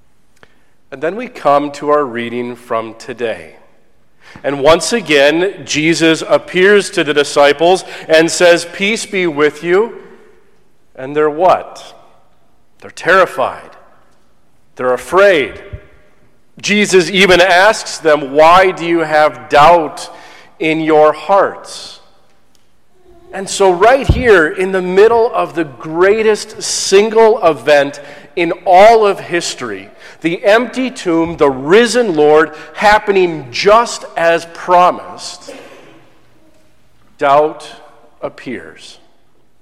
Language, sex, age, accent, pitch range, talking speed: English, male, 40-59, American, 145-190 Hz, 105 wpm